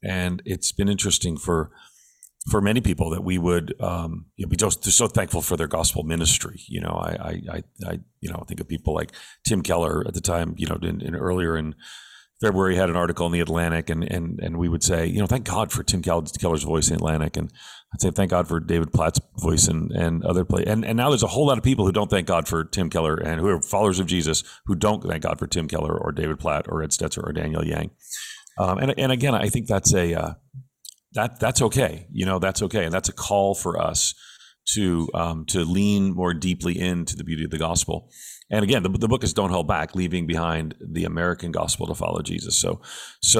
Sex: male